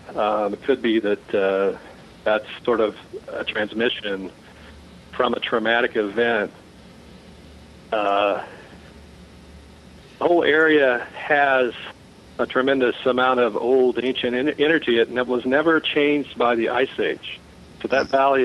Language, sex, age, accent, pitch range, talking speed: English, male, 50-69, American, 105-125 Hz, 125 wpm